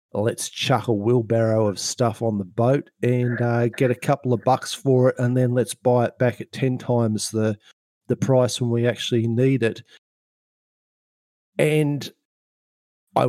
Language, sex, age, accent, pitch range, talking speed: English, male, 40-59, Australian, 105-130 Hz, 165 wpm